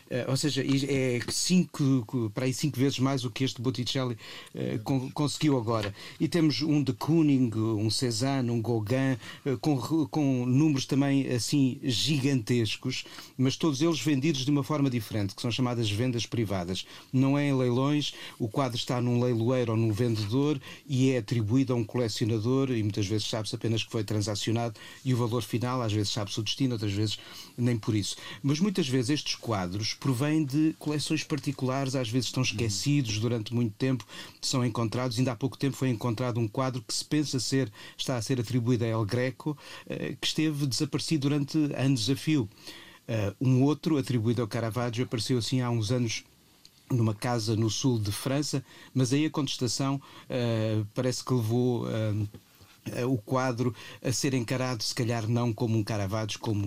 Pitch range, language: 115-135 Hz, Portuguese